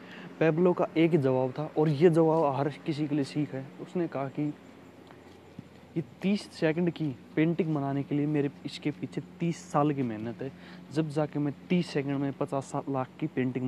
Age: 20-39